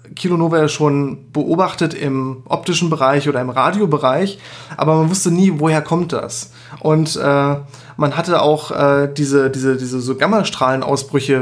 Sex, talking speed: male, 135 wpm